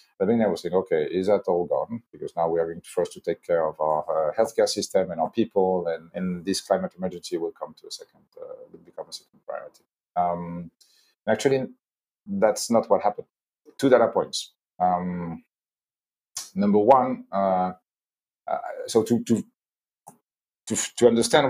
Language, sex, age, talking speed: English, male, 40-59, 175 wpm